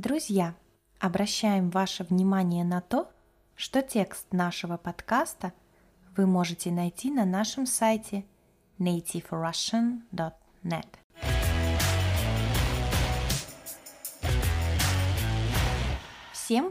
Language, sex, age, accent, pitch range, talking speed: Russian, female, 20-39, native, 175-220 Hz, 65 wpm